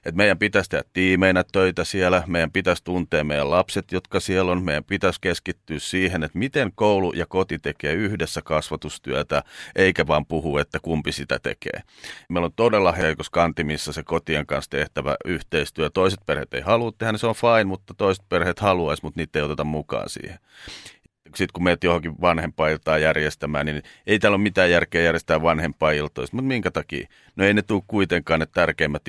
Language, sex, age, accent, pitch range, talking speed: Finnish, male, 40-59, native, 80-100 Hz, 180 wpm